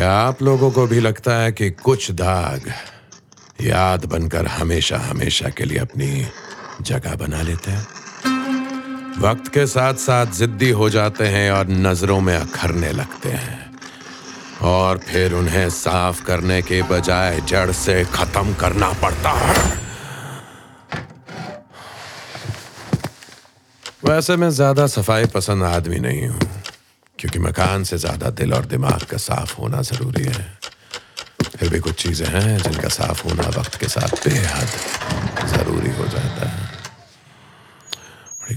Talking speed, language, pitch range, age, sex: 130 wpm, Hindi, 90-130 Hz, 50-69, male